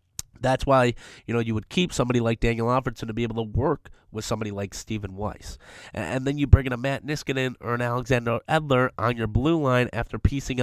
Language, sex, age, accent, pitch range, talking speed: English, male, 30-49, American, 110-130 Hz, 220 wpm